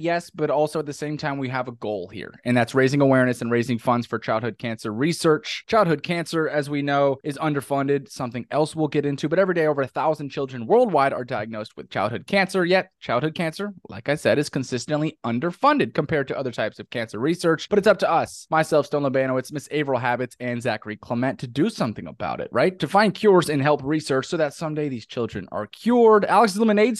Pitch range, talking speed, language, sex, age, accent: 125-155 Hz, 220 wpm, English, male, 20-39, American